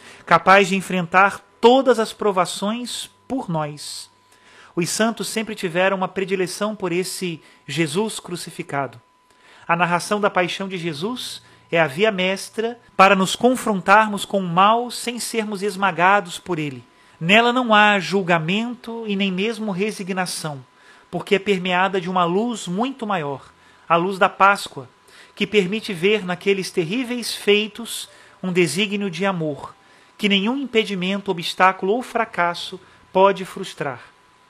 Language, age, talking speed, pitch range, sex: Portuguese, 40-59, 135 wpm, 175-210 Hz, male